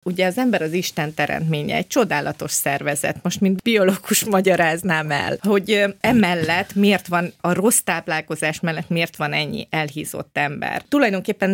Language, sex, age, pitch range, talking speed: Hungarian, female, 30-49, 165-205 Hz, 145 wpm